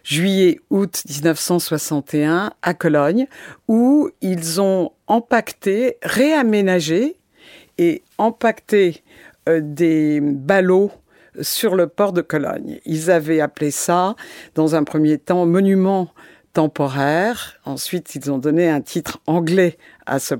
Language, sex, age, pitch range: French, female, 50-69, 160-215 Hz